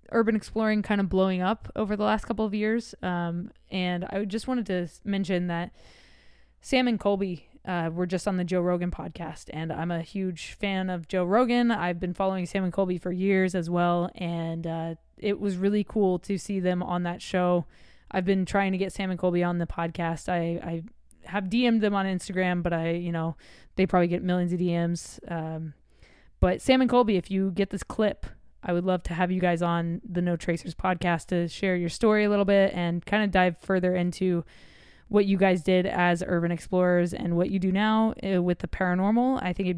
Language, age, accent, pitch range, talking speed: English, 20-39, American, 175-195 Hz, 215 wpm